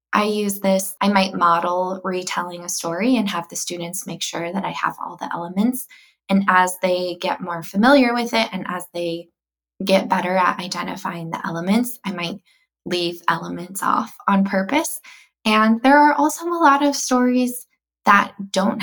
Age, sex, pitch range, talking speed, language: 20-39, female, 180-225 Hz, 175 wpm, English